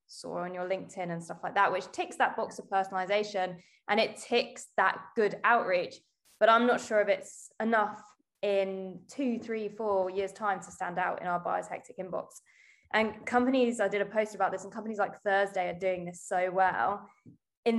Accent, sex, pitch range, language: British, female, 195-235 Hz, English